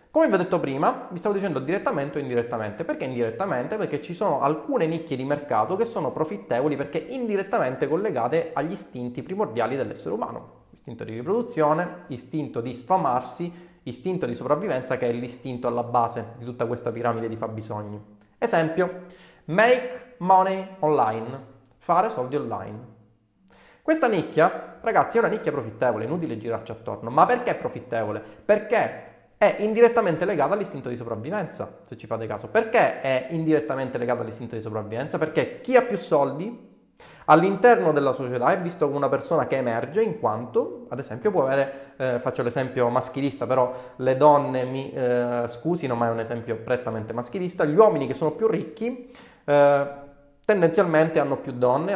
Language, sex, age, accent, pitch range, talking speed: Italian, male, 30-49, native, 120-175 Hz, 160 wpm